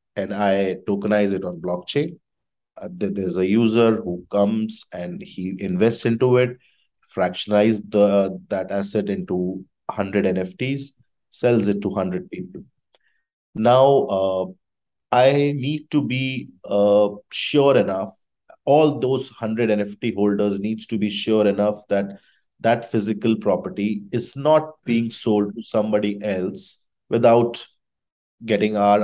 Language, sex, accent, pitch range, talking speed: English, male, Indian, 100-120 Hz, 125 wpm